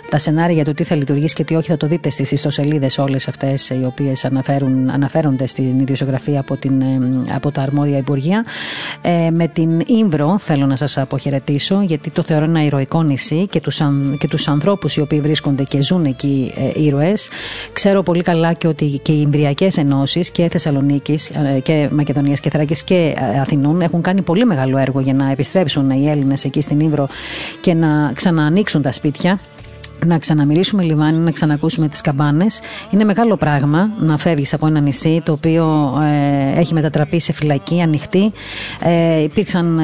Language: Greek